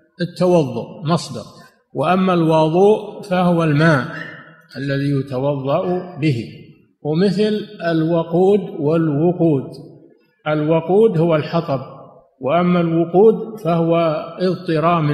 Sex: male